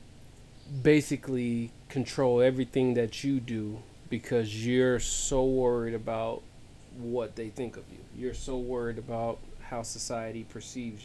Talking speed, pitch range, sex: 125 wpm, 110-125 Hz, male